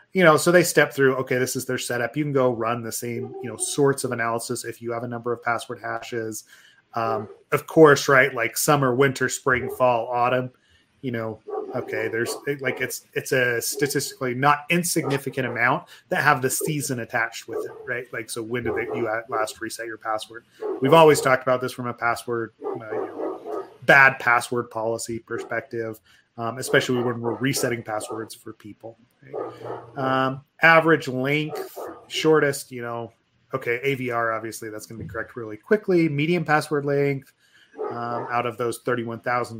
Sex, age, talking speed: male, 30-49, 180 wpm